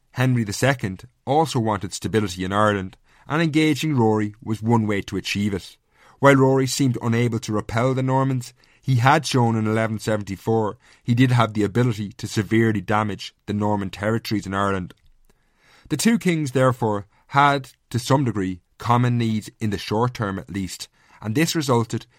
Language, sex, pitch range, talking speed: English, male, 105-125 Hz, 165 wpm